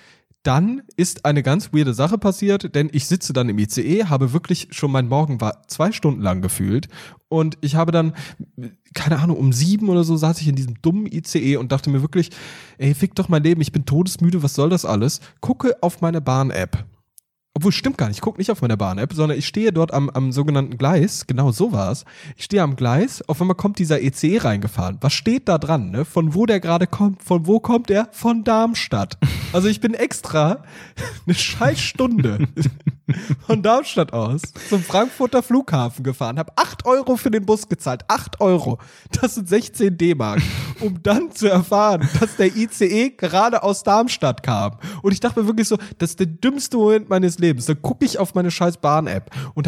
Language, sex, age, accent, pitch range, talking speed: German, male, 10-29, German, 140-205 Hz, 195 wpm